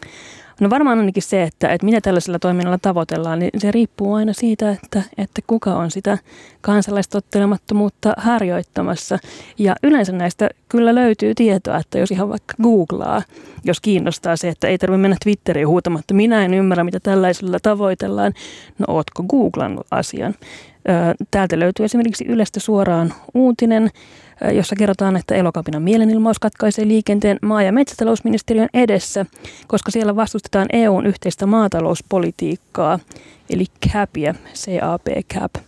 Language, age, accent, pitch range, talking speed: Finnish, 30-49, native, 180-215 Hz, 130 wpm